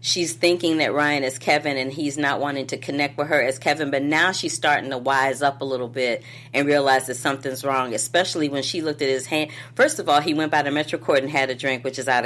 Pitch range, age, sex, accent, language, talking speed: 130-170 Hz, 40-59, female, American, English, 265 wpm